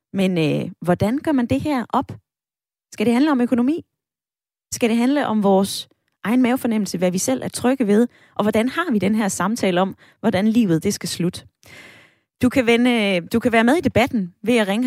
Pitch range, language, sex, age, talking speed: 180-235 Hz, Danish, female, 20-39, 200 wpm